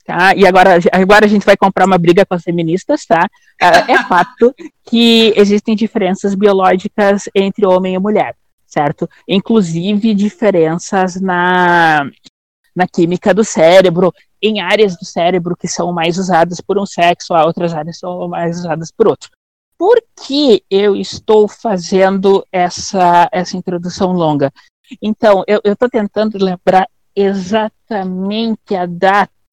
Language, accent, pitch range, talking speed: Portuguese, Brazilian, 180-230 Hz, 140 wpm